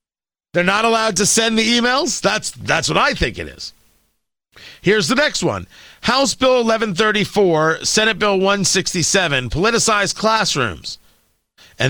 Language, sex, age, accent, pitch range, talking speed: English, male, 50-69, American, 160-220 Hz, 135 wpm